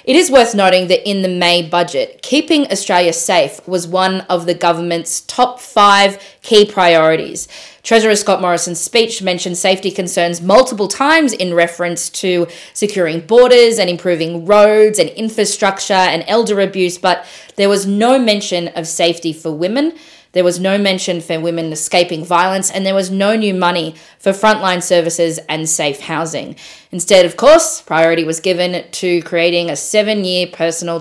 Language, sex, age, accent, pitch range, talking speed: English, female, 20-39, Australian, 170-205 Hz, 160 wpm